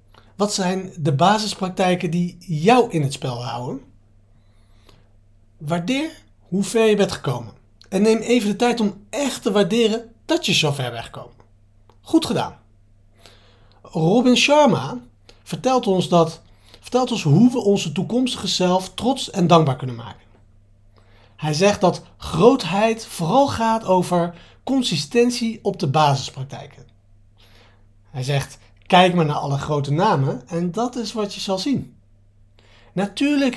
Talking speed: 135 wpm